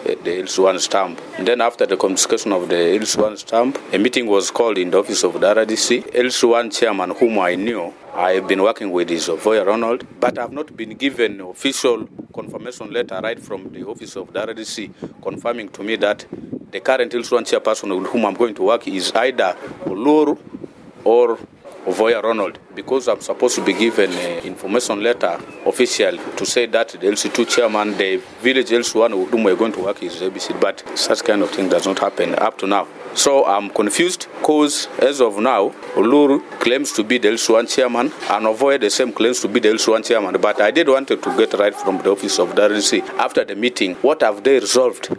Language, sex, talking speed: English, male, 205 wpm